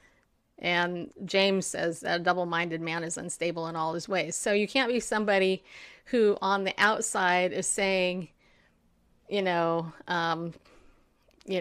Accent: American